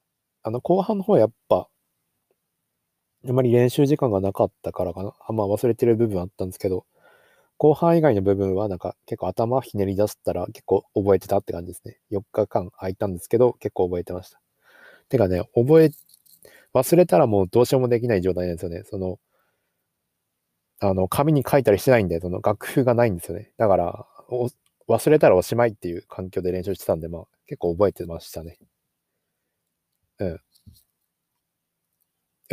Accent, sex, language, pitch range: native, male, Japanese, 95-125 Hz